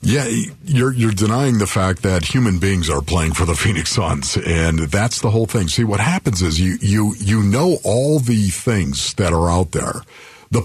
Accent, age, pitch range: American, 50-69, 105-170 Hz